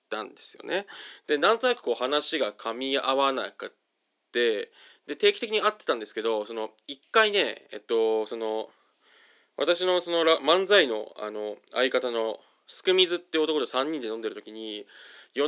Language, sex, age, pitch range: Japanese, male, 20-39, 120-200 Hz